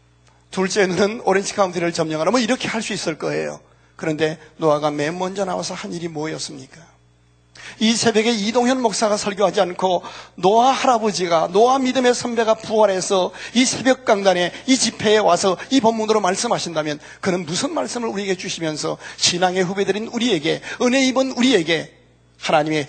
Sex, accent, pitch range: male, native, 140-220 Hz